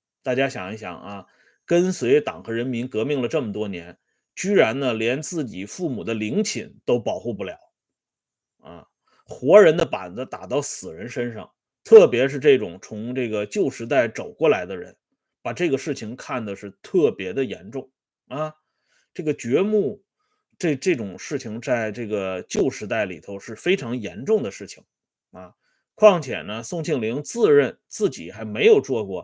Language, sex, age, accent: Swedish, male, 30-49, Chinese